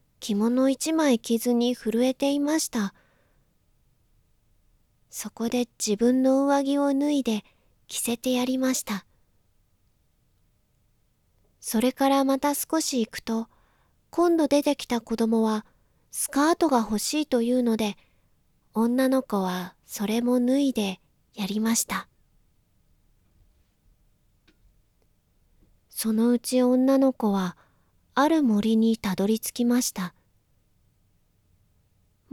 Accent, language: native, Japanese